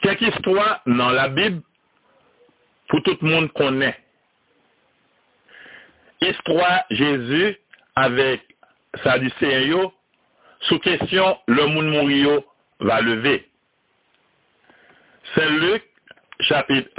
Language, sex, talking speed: French, male, 115 wpm